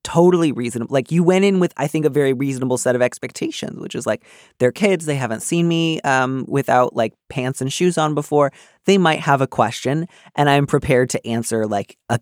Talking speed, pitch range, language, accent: 220 wpm, 115-140 Hz, English, American